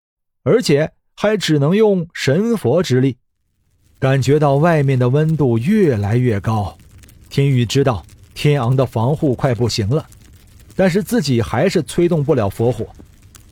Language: Chinese